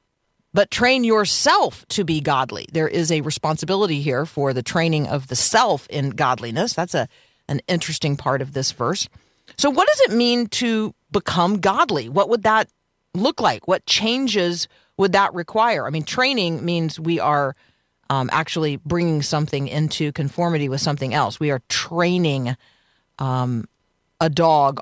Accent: American